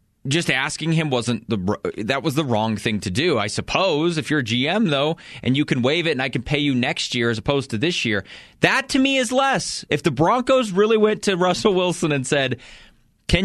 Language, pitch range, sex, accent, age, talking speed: English, 125-180 Hz, male, American, 30-49, 230 wpm